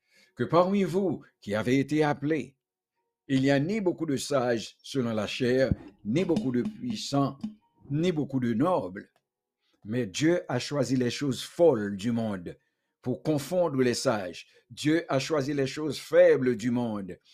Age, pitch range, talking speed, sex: 60-79, 110-150 Hz, 160 wpm, male